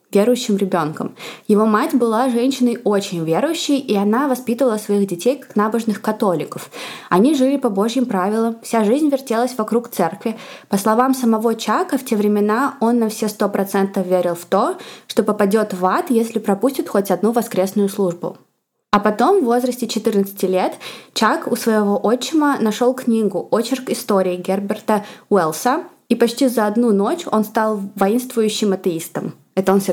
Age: 20-39